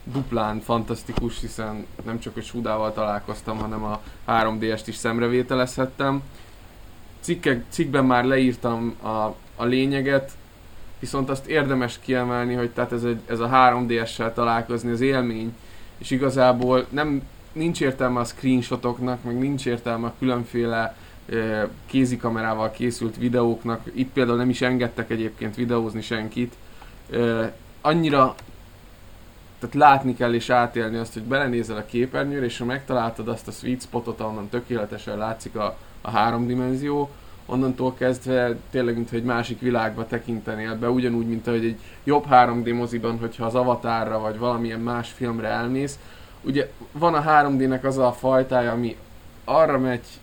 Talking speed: 140 wpm